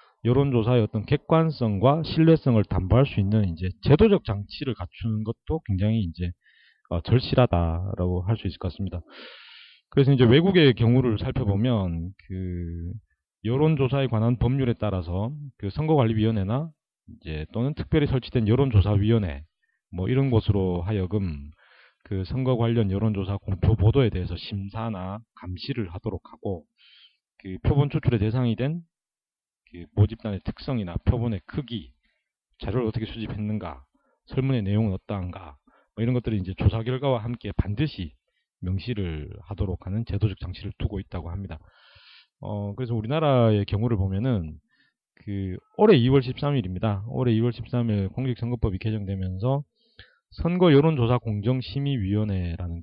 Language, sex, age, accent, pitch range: Korean, male, 40-59, native, 95-125 Hz